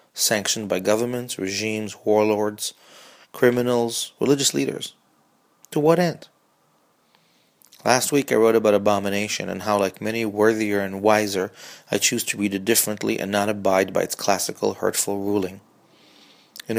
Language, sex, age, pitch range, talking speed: English, male, 30-49, 100-115 Hz, 140 wpm